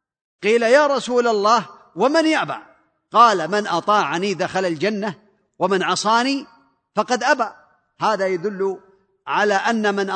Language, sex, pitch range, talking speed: Arabic, male, 195-220 Hz, 120 wpm